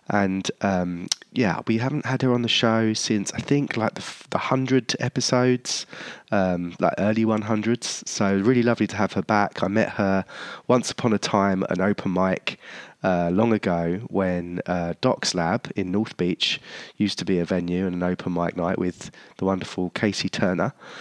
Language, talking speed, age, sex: English, 190 wpm, 20-39, male